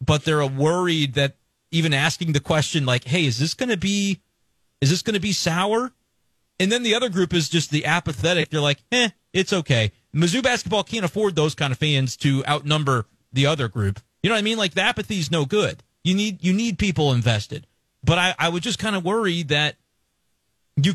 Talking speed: 200 wpm